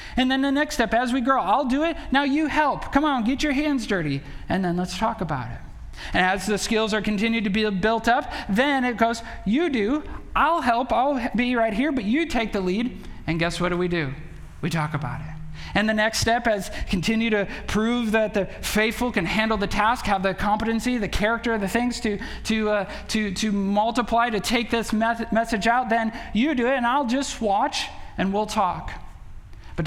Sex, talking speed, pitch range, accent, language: male, 215 wpm, 185-245 Hz, American, English